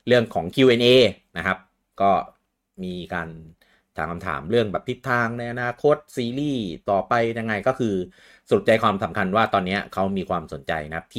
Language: Thai